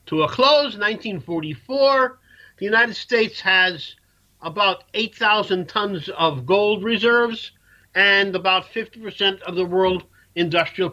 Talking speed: 120 wpm